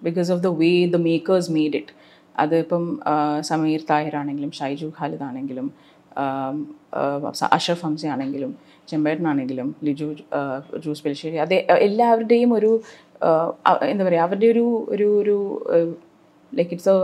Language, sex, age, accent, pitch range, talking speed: Malayalam, female, 30-49, native, 165-205 Hz, 120 wpm